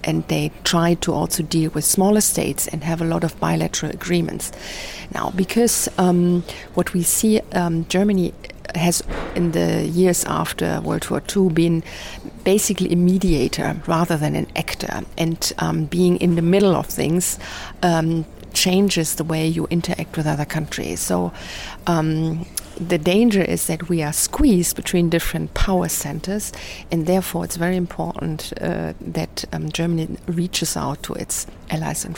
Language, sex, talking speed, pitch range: English, female, 160 wpm, 160-180 Hz